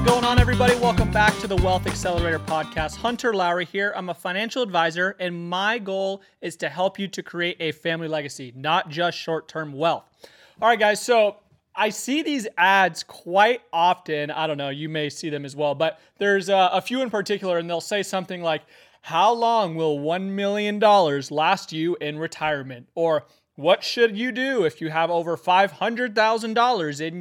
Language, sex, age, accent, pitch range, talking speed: English, male, 30-49, American, 160-205 Hz, 185 wpm